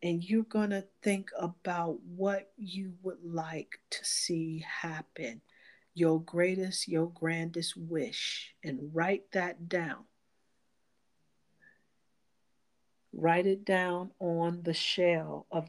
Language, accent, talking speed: English, American, 110 wpm